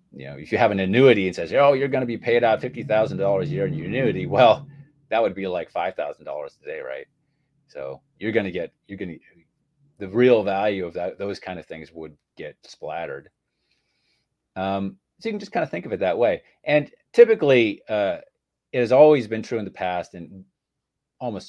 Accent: American